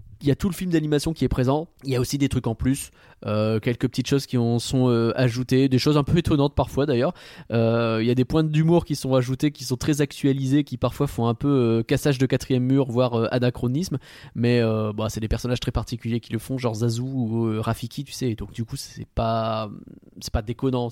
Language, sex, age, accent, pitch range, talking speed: French, male, 20-39, French, 115-145 Hz, 240 wpm